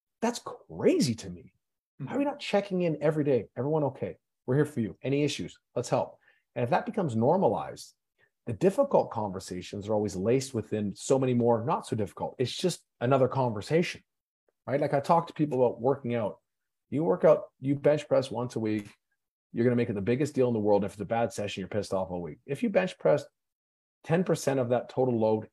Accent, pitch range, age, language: American, 110-155 Hz, 40-59, English